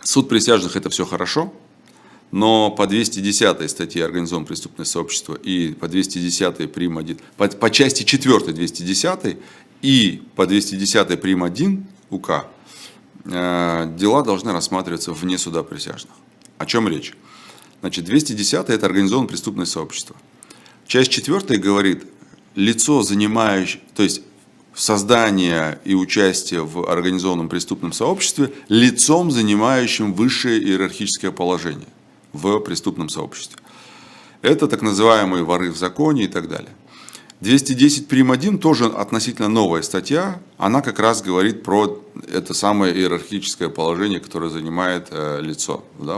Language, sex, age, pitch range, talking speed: Russian, male, 30-49, 90-115 Hz, 125 wpm